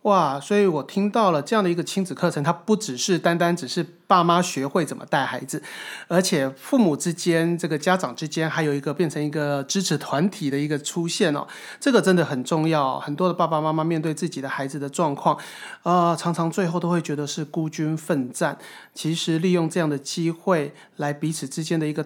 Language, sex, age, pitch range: Chinese, male, 30-49, 155-185 Hz